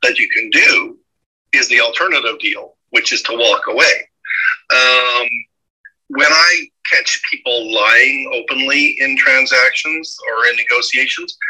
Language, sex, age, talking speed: English, male, 40-59, 130 wpm